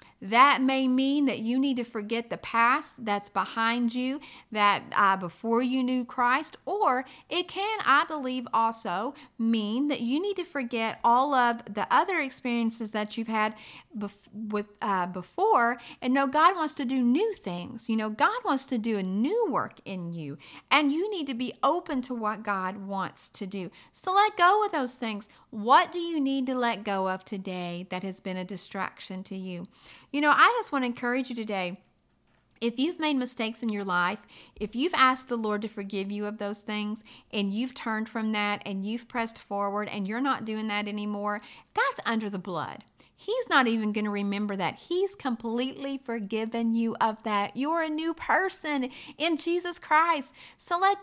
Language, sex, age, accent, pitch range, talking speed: English, female, 40-59, American, 205-270 Hz, 195 wpm